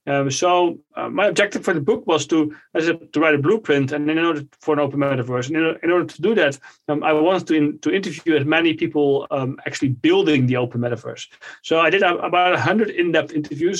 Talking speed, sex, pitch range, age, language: 235 wpm, male, 140-170 Hz, 30-49, English